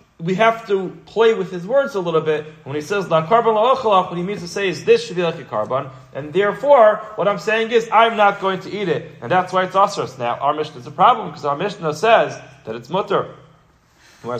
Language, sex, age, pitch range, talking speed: English, male, 30-49, 150-200 Hz, 240 wpm